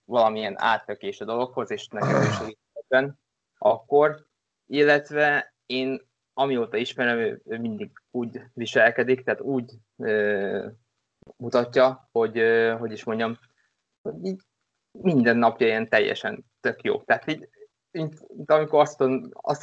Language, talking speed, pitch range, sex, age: Hungarian, 120 wpm, 115-135 Hz, male, 20-39